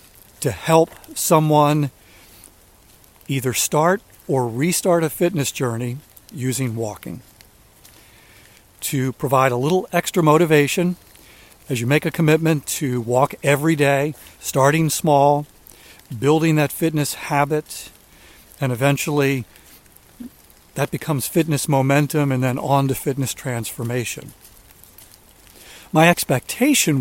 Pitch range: 120-155 Hz